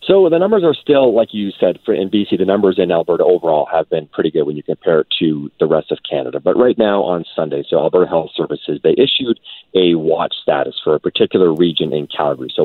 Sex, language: male, English